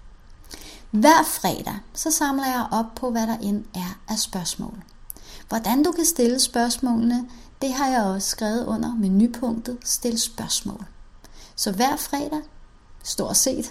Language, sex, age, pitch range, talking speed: Danish, female, 30-49, 210-265 Hz, 145 wpm